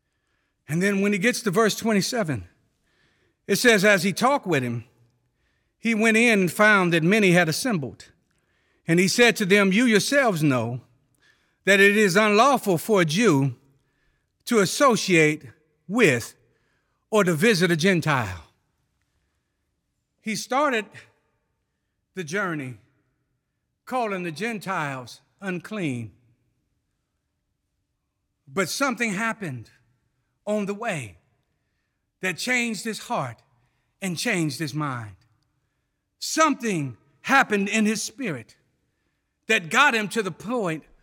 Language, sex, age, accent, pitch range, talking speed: English, male, 60-79, American, 145-230 Hz, 115 wpm